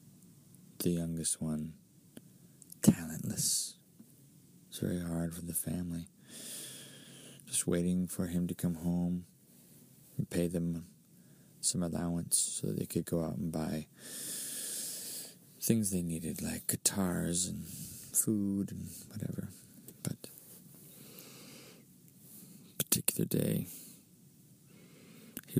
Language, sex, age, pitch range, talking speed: English, male, 20-39, 85-100 Hz, 100 wpm